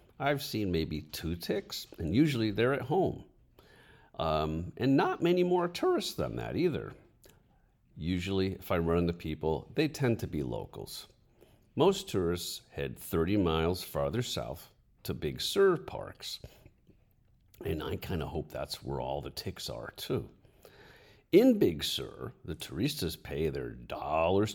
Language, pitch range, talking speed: English, 80-120 Hz, 150 wpm